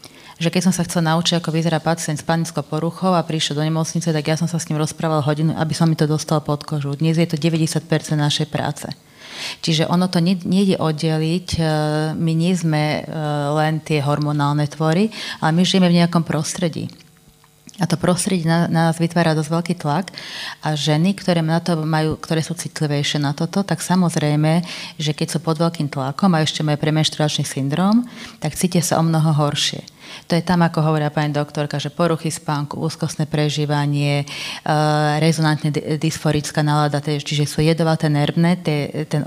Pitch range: 150-170 Hz